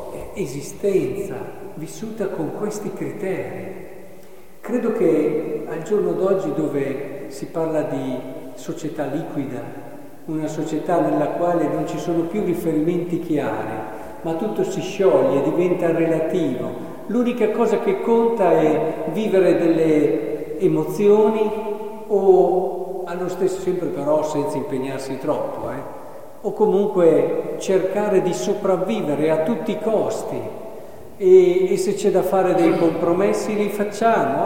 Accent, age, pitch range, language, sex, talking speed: native, 50-69, 155-205 Hz, Italian, male, 120 wpm